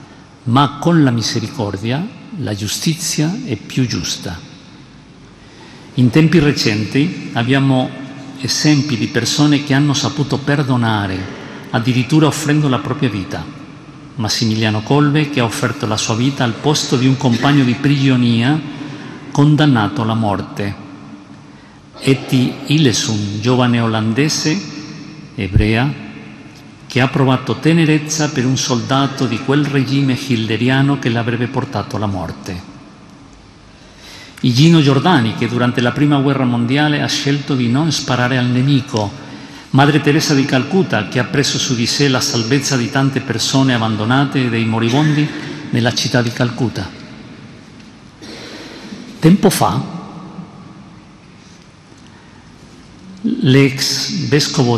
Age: 50-69